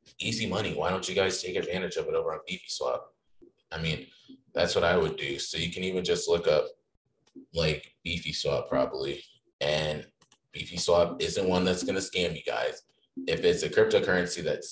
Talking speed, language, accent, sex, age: 195 wpm, English, American, male, 30-49